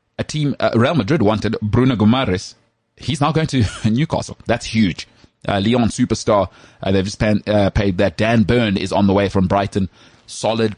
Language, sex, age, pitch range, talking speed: English, male, 30-49, 95-115 Hz, 185 wpm